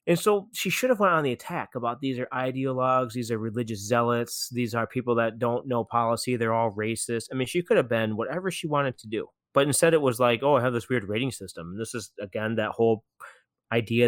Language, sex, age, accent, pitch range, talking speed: English, male, 20-39, American, 110-130 Hz, 240 wpm